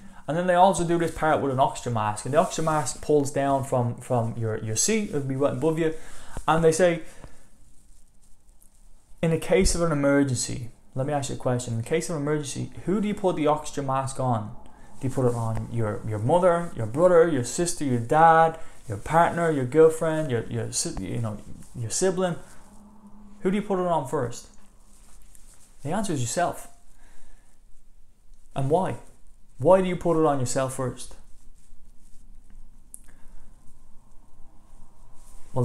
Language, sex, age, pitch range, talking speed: English, male, 20-39, 115-160 Hz, 170 wpm